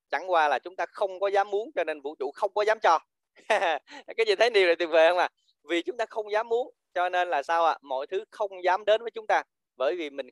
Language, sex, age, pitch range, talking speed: Vietnamese, male, 20-39, 140-190 Hz, 290 wpm